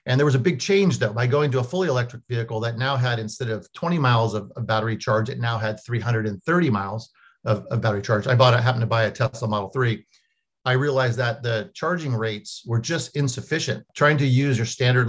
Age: 50-69